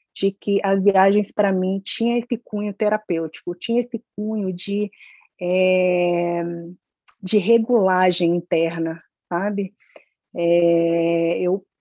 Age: 30-49